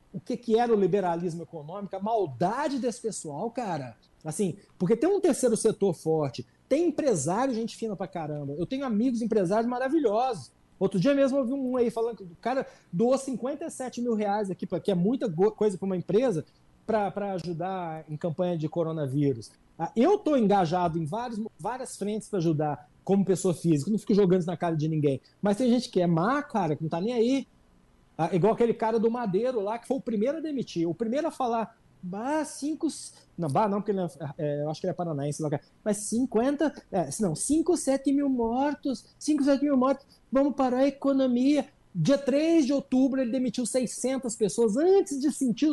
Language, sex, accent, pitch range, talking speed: Italian, male, Brazilian, 180-260 Hz, 200 wpm